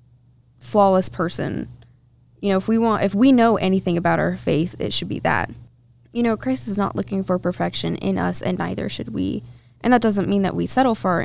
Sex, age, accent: female, 20-39, American